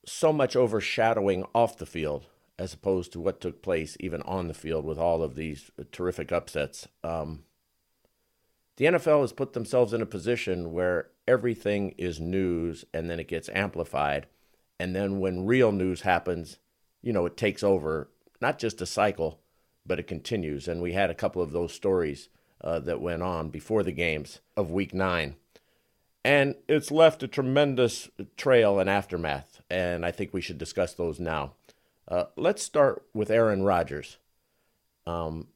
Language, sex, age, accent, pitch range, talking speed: English, male, 50-69, American, 85-105 Hz, 165 wpm